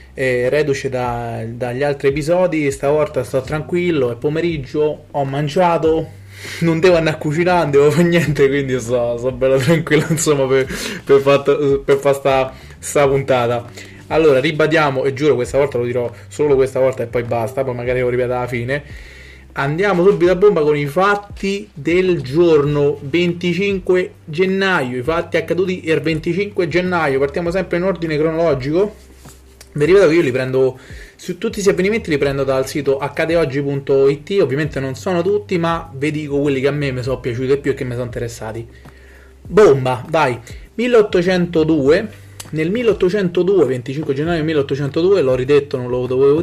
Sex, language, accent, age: male, Italian, native, 20-39